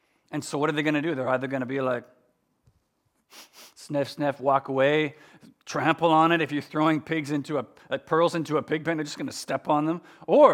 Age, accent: 40-59, American